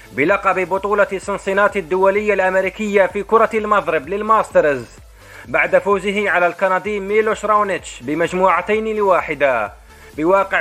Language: Arabic